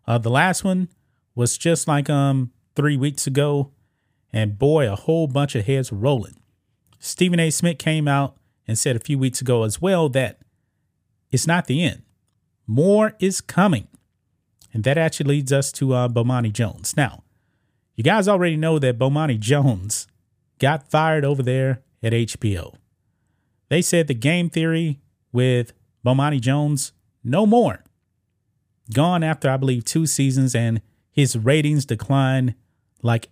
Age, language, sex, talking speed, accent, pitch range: 30-49, English, male, 150 wpm, American, 115-150 Hz